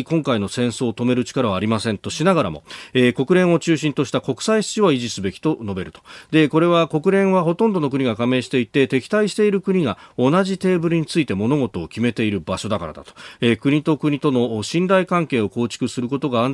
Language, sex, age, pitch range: Japanese, male, 40-59, 105-160 Hz